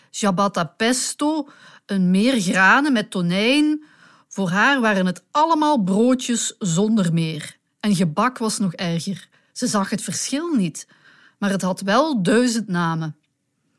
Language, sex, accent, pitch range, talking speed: Dutch, female, Dutch, 190-245 Hz, 135 wpm